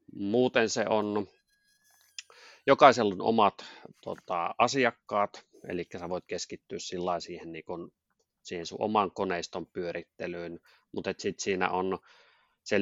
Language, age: Finnish, 30-49